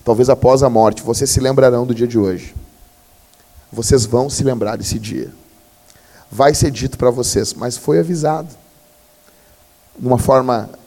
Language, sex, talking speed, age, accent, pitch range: Portuguese, male, 155 wpm, 40-59, Brazilian, 130-170 Hz